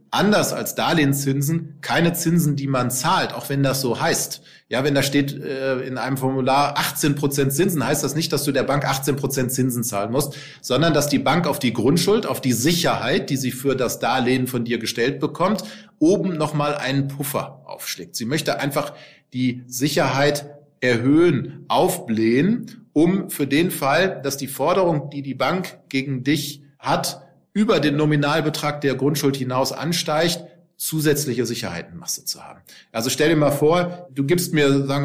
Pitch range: 130-155 Hz